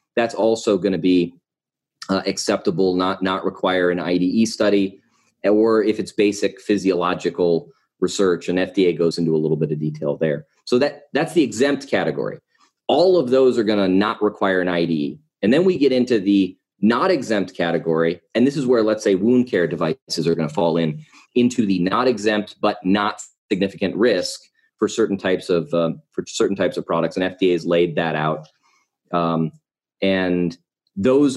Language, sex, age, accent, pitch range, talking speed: English, male, 30-49, American, 85-110 Hz, 180 wpm